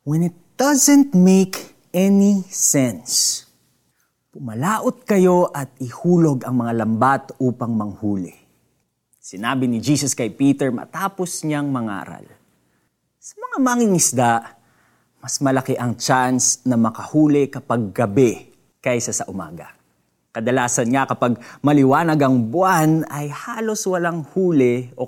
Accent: native